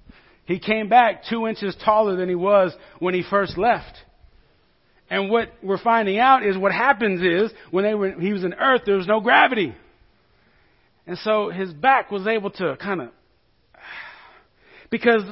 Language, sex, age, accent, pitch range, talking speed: English, male, 40-59, American, 170-230 Hz, 160 wpm